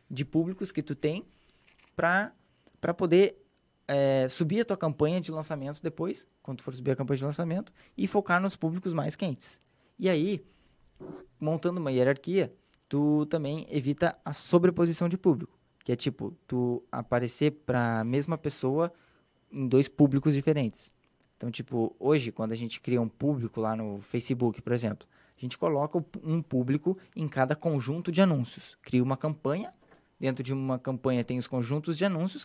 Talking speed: 165 wpm